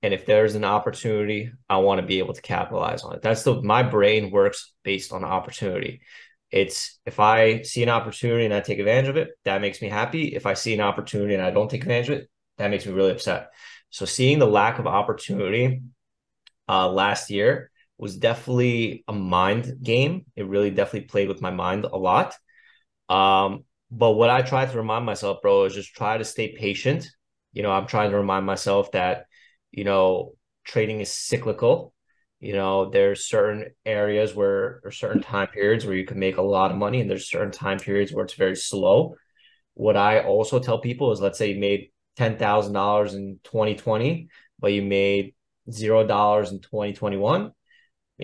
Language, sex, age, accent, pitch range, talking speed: English, male, 30-49, American, 100-130 Hz, 190 wpm